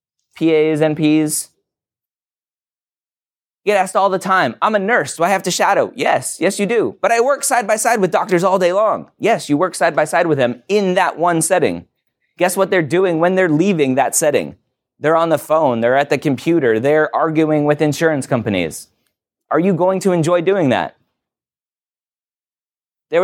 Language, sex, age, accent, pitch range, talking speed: English, male, 20-39, American, 125-180 Hz, 185 wpm